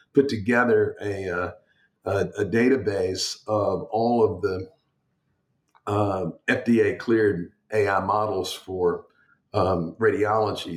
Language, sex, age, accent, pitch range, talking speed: English, male, 50-69, American, 105-135 Hz, 90 wpm